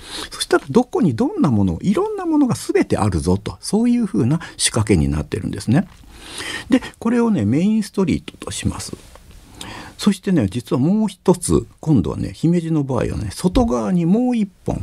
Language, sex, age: Japanese, male, 50-69